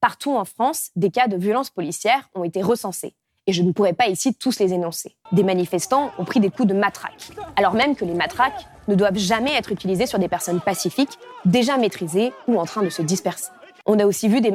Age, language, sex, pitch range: 20-39, French, female, 190-245 Hz